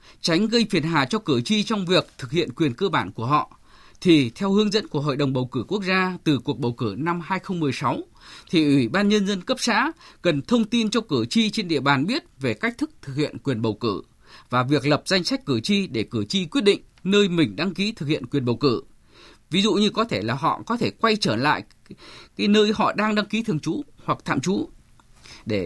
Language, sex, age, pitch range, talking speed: Vietnamese, male, 20-39, 140-205 Hz, 240 wpm